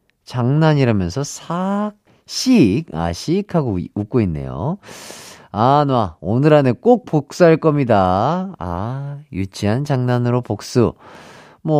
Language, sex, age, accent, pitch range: Korean, male, 40-59, native, 105-165 Hz